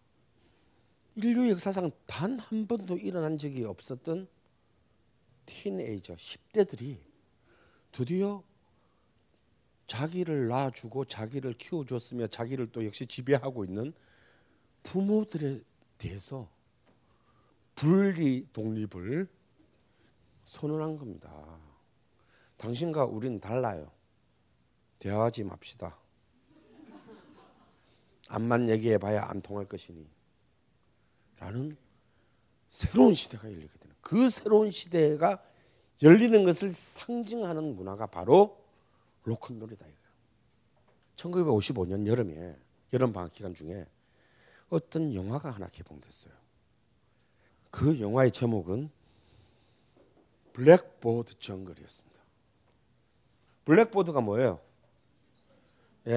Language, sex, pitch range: Korean, male, 100-160 Hz